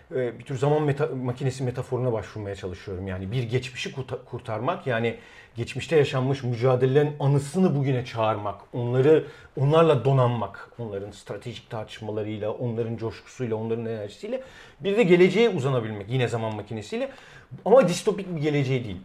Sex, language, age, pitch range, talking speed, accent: male, Turkish, 40-59, 125-195 Hz, 130 wpm, native